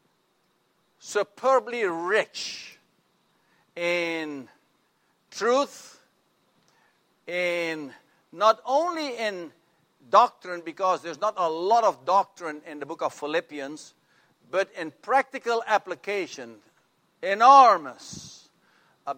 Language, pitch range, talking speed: English, 170-240 Hz, 85 wpm